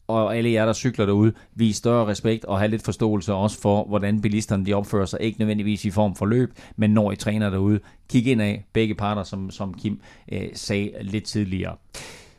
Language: Danish